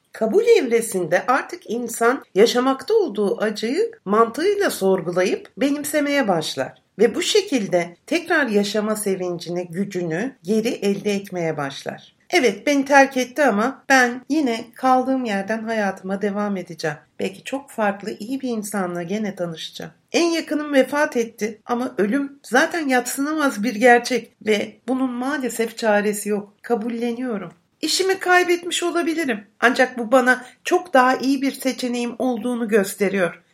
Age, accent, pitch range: 60-79, native, 195-265 Hz